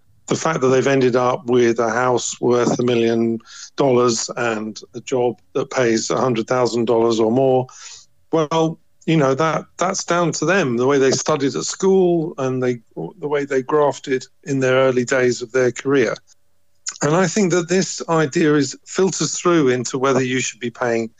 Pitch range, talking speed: 120-145 Hz, 180 wpm